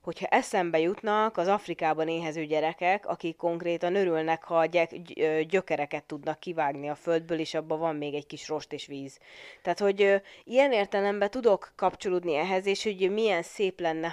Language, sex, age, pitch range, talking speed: Hungarian, female, 20-39, 155-185 Hz, 155 wpm